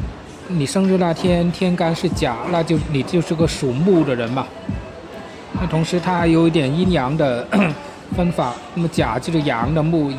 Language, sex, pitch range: Chinese, male, 130-170 Hz